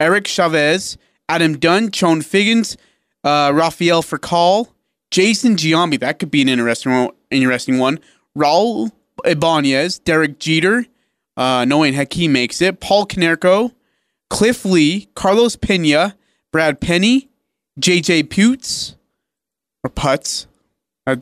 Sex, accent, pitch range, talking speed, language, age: male, American, 140-195 Hz, 115 wpm, English, 30-49